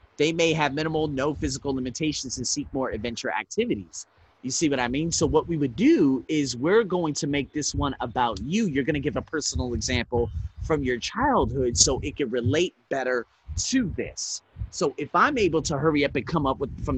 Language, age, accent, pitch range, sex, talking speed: English, 30-49, American, 125-170 Hz, male, 210 wpm